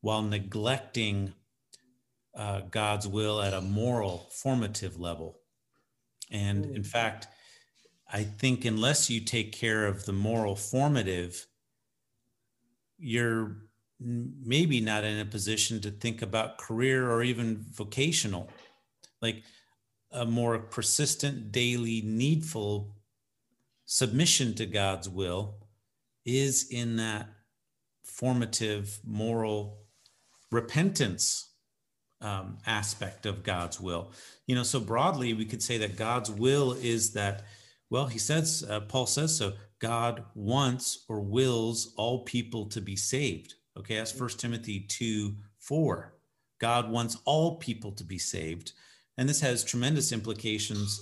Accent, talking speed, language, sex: American, 120 wpm, English, male